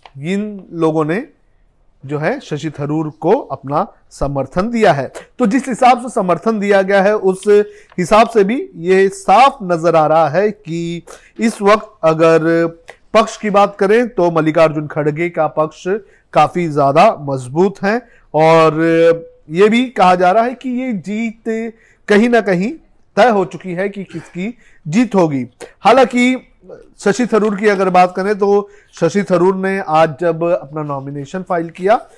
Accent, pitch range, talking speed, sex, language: native, 165-210 Hz, 160 wpm, male, Hindi